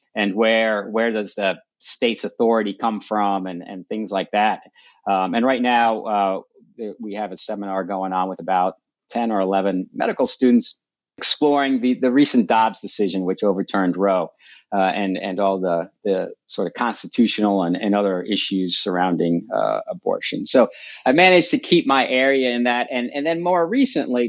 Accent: American